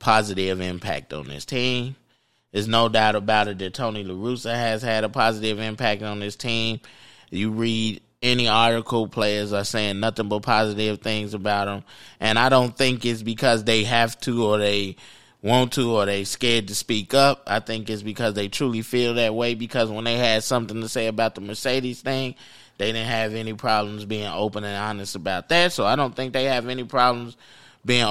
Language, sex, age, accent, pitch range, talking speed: English, male, 20-39, American, 105-120 Hz, 200 wpm